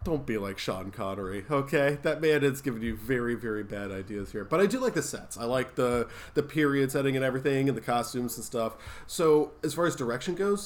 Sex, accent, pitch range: male, American, 110-145 Hz